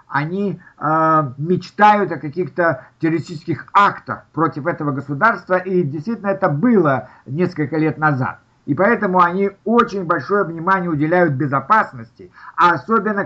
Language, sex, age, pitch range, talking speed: Russian, male, 60-79, 160-200 Hz, 120 wpm